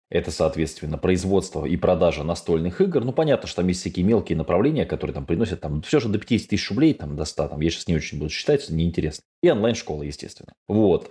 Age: 20-39